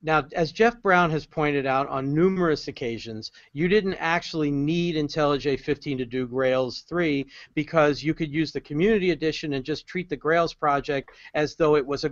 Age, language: 50-69, English